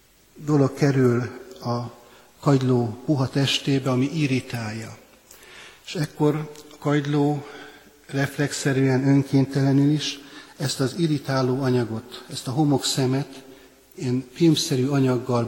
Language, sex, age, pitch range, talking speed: Hungarian, male, 60-79, 120-145 Hz, 95 wpm